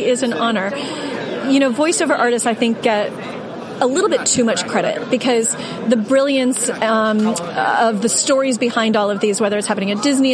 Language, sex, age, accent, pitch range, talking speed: English, female, 30-49, American, 225-270 Hz, 185 wpm